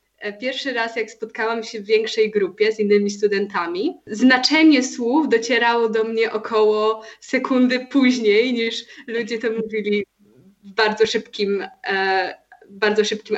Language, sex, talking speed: Polish, female, 120 wpm